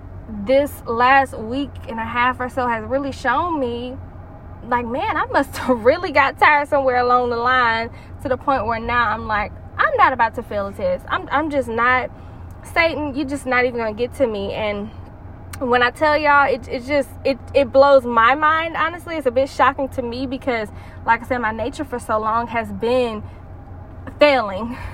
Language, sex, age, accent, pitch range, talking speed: English, female, 10-29, American, 220-270 Hz, 200 wpm